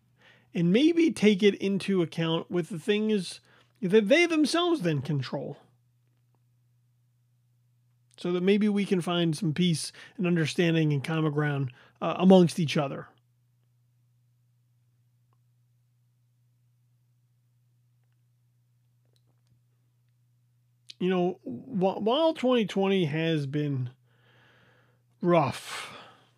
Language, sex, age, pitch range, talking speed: English, male, 30-49, 120-175 Hz, 85 wpm